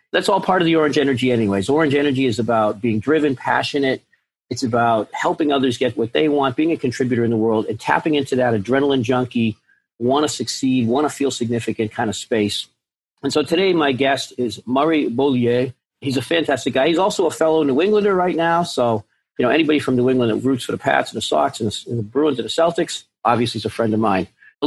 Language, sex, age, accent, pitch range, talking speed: English, male, 40-59, American, 120-145 Hz, 230 wpm